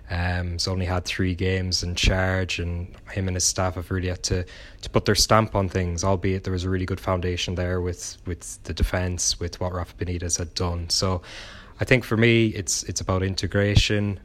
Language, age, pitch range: English, 20-39, 90-95 Hz